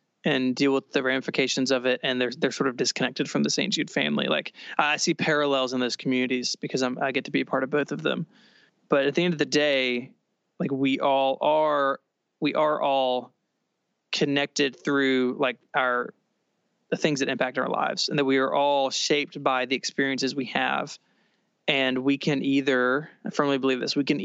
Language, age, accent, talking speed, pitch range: English, 20-39, American, 200 wpm, 130-150 Hz